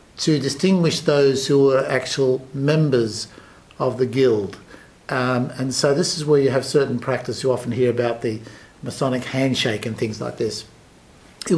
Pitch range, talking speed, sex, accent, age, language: 125-150 Hz, 165 wpm, male, Australian, 60-79, English